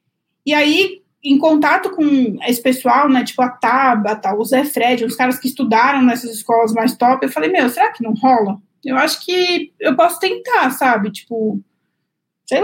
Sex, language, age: female, Portuguese, 20-39